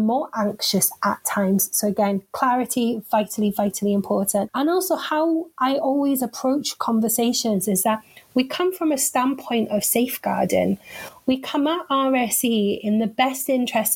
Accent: British